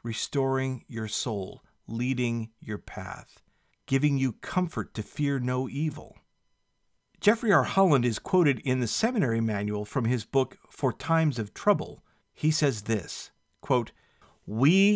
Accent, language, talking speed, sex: American, English, 135 wpm, male